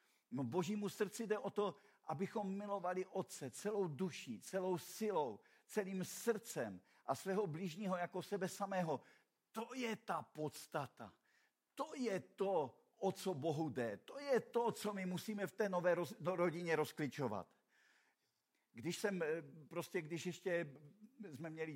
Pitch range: 160-200 Hz